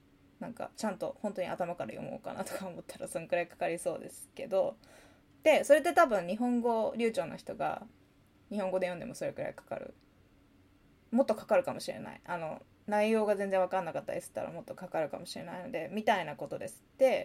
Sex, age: female, 20-39